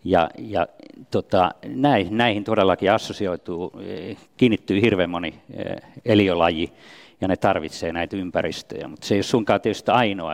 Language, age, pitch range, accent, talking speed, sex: Finnish, 50-69, 90-110 Hz, native, 140 wpm, male